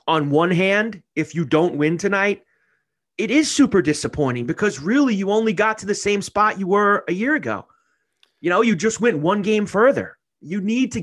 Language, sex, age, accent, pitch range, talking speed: English, male, 30-49, American, 145-205 Hz, 200 wpm